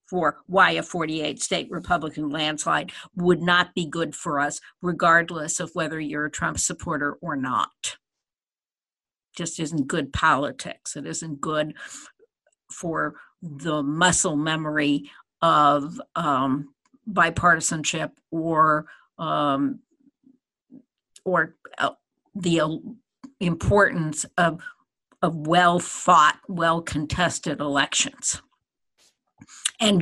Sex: female